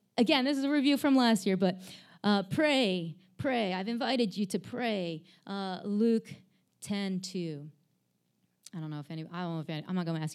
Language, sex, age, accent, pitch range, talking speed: English, female, 20-39, American, 175-245 Hz, 185 wpm